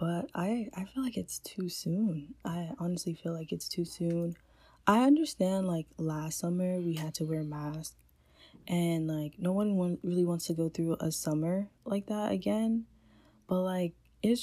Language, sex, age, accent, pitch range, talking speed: English, female, 10-29, American, 160-215 Hz, 180 wpm